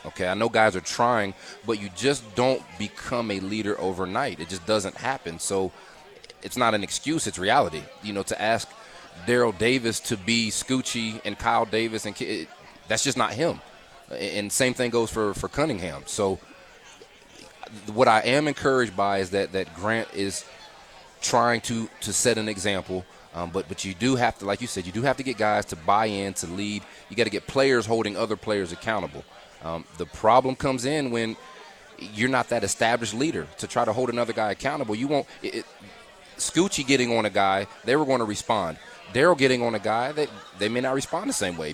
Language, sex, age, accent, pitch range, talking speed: English, male, 30-49, American, 100-120 Hz, 200 wpm